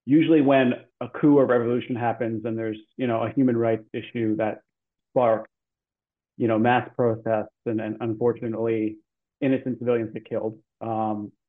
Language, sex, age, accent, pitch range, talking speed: English, male, 30-49, American, 115-140 Hz, 150 wpm